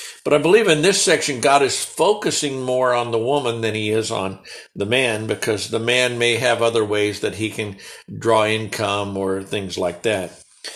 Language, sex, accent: English, male, American